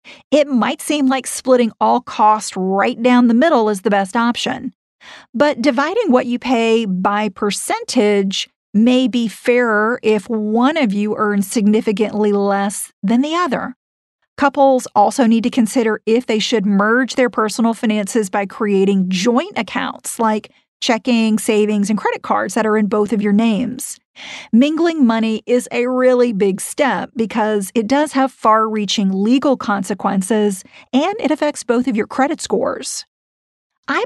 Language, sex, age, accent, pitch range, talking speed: English, female, 40-59, American, 210-255 Hz, 155 wpm